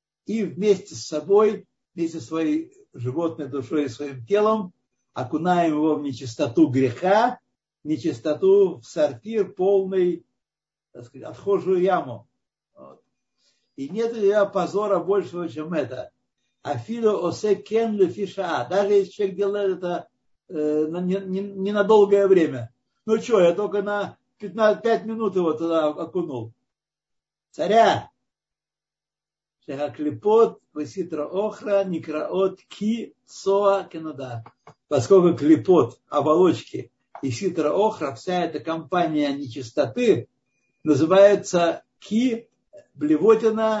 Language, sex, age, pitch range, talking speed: Russian, male, 60-79, 150-200 Hz, 110 wpm